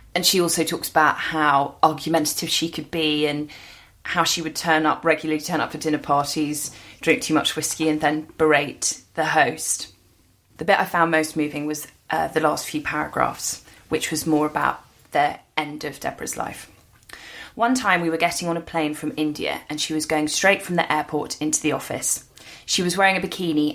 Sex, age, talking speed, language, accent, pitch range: female, 20-39, 195 wpm, English, British, 150-175 Hz